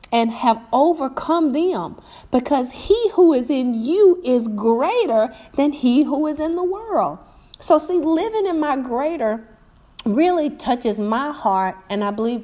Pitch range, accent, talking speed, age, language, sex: 195-290 Hz, American, 155 wpm, 40-59, English, female